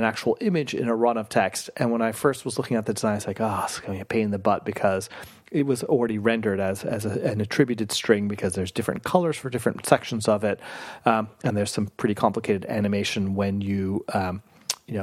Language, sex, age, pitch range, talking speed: English, male, 30-49, 100-130 Hz, 245 wpm